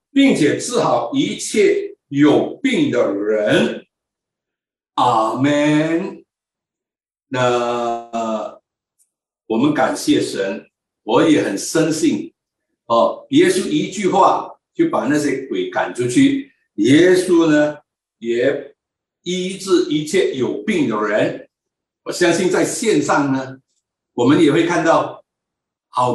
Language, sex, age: Chinese, male, 60-79